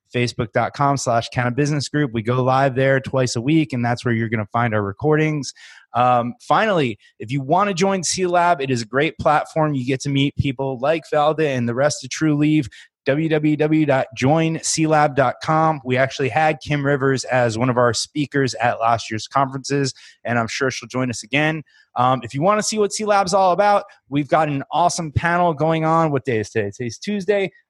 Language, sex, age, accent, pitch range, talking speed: English, male, 20-39, American, 125-155 Hz, 200 wpm